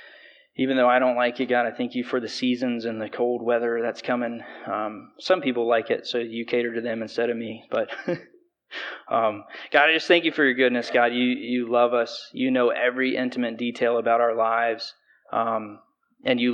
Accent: American